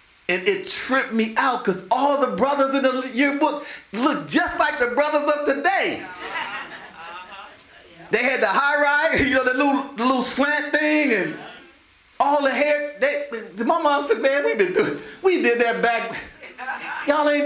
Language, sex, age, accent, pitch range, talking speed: English, male, 40-59, American, 260-315 Hz, 160 wpm